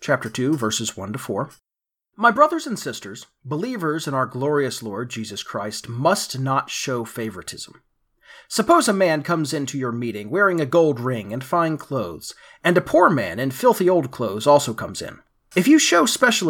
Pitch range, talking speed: 135-195 Hz, 180 wpm